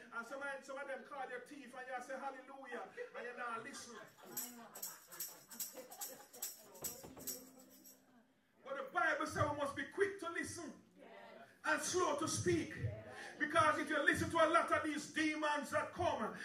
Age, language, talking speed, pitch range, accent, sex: 30-49, English, 150 wpm, 280-320 Hz, Nigerian, male